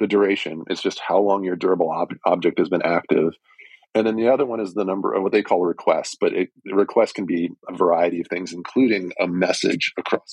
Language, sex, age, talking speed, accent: English, male, 40-59, 225 wpm, American